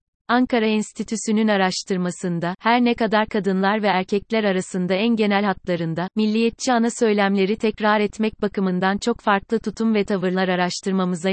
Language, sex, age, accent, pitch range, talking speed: Turkish, female, 30-49, native, 195-220 Hz, 135 wpm